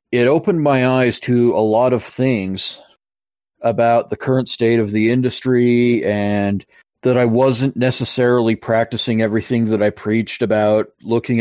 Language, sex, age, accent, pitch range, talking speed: English, male, 40-59, American, 105-125 Hz, 145 wpm